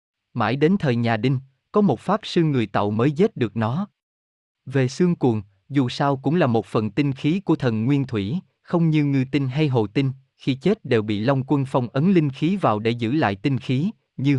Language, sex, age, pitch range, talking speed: Vietnamese, male, 20-39, 115-155 Hz, 225 wpm